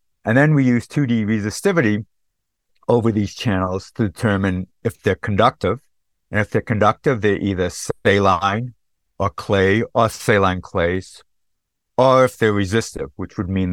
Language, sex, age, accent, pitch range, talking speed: English, male, 50-69, American, 90-110 Hz, 145 wpm